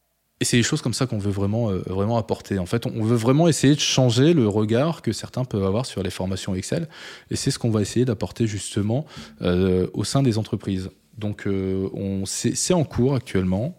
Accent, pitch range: French, 100-120 Hz